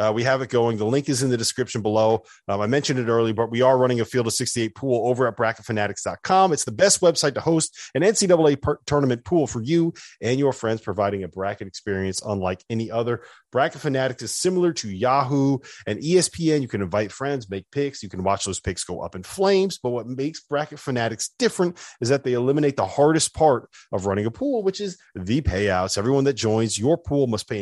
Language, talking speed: English, 220 wpm